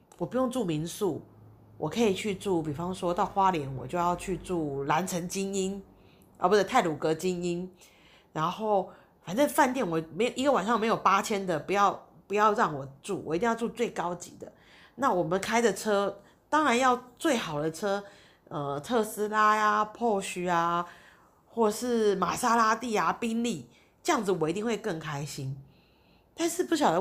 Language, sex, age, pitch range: Chinese, female, 40-59, 170-235 Hz